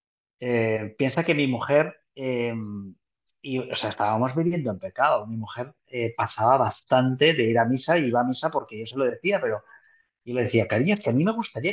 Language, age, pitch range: Spanish, 30-49, 115-155 Hz